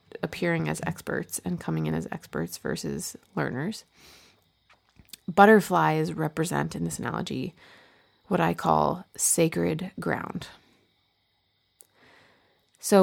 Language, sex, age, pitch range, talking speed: English, female, 30-49, 155-185 Hz, 95 wpm